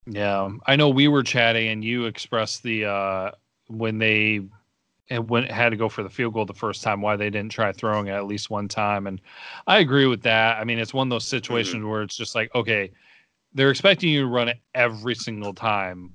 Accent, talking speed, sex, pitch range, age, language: American, 220 wpm, male, 100-120 Hz, 30-49, English